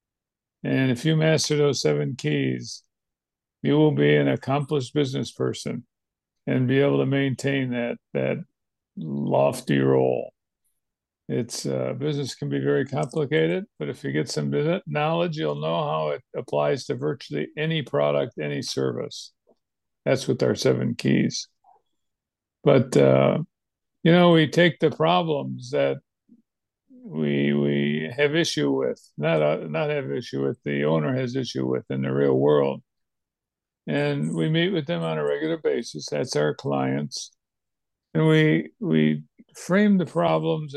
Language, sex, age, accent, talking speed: English, male, 60-79, American, 145 wpm